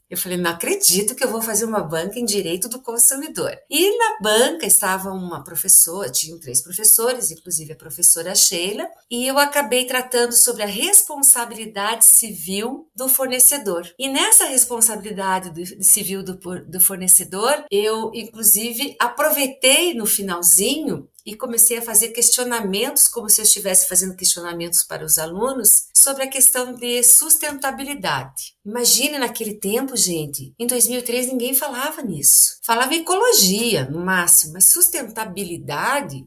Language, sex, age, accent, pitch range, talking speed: Portuguese, female, 50-69, Brazilian, 190-260 Hz, 135 wpm